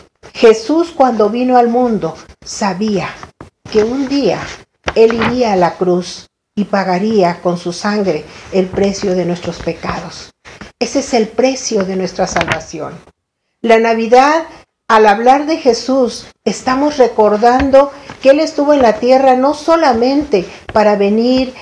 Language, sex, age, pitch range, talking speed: Spanish, female, 50-69, 190-240 Hz, 135 wpm